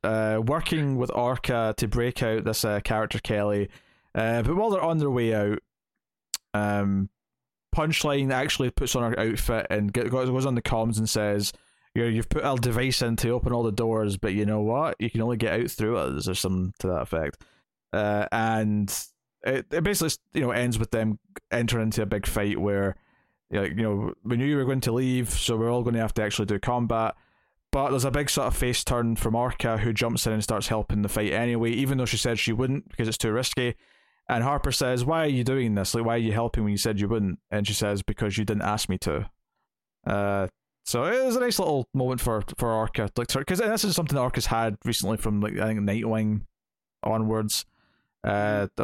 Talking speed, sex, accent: 215 wpm, male, British